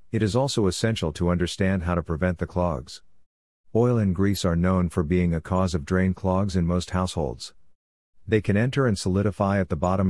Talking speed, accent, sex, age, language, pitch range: 200 wpm, American, male, 50-69, English, 85-100 Hz